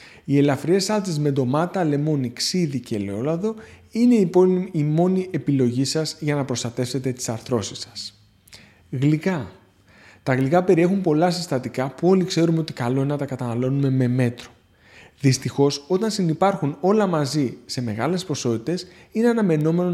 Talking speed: 140 wpm